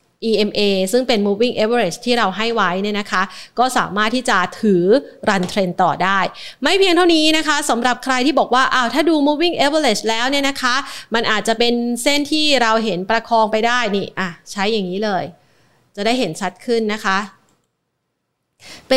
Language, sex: Thai, female